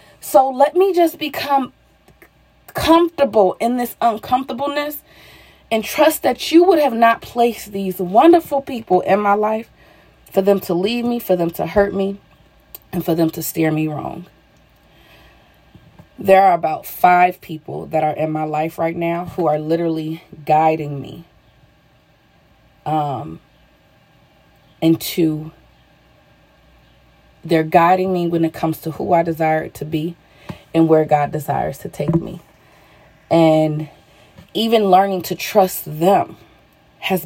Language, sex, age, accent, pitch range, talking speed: English, female, 30-49, American, 155-200 Hz, 135 wpm